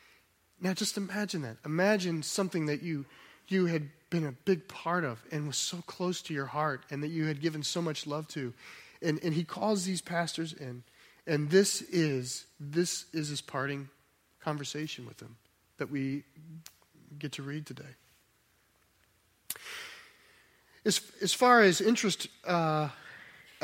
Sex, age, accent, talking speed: male, 30-49, American, 150 wpm